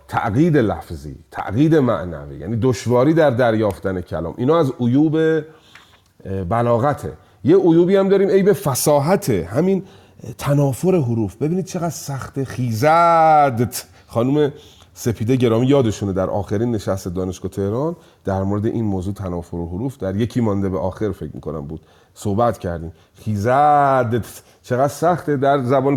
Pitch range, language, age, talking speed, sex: 95-135 Hz, Persian, 30-49, 130 wpm, male